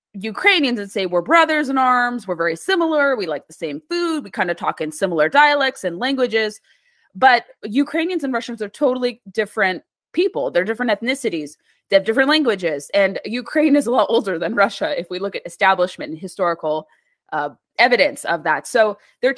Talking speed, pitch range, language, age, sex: 185 wpm, 190-250 Hz, English, 20-39, female